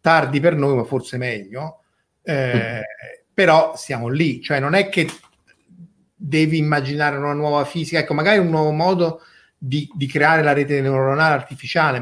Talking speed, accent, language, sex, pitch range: 155 wpm, native, Italian, male, 130-165 Hz